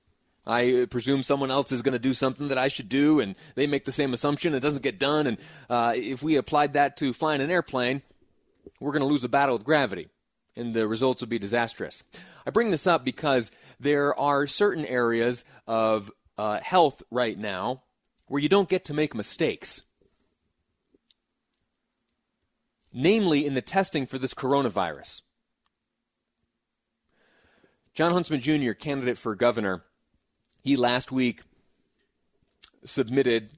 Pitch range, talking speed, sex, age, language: 125-160 Hz, 150 wpm, male, 30-49, English